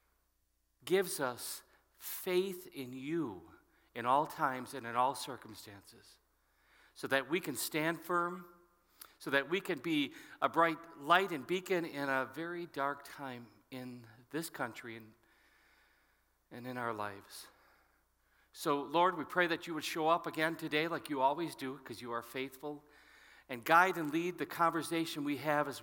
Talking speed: 160 wpm